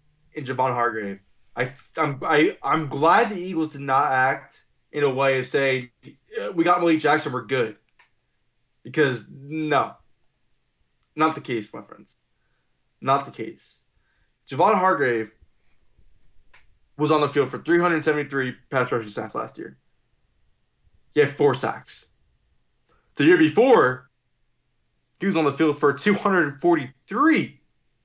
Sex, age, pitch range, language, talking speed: male, 20-39, 125-155 Hz, English, 130 wpm